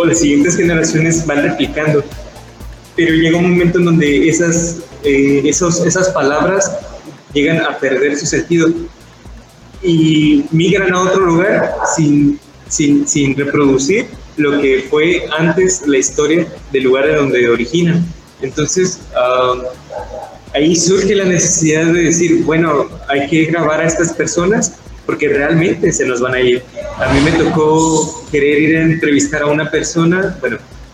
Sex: male